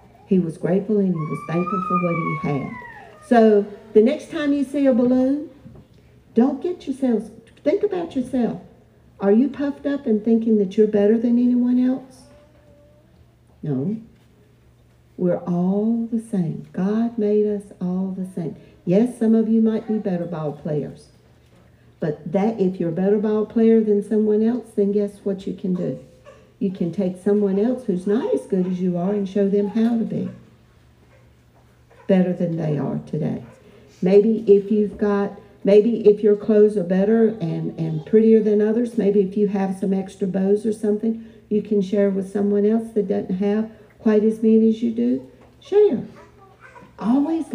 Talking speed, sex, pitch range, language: 175 wpm, female, 195-225 Hz, English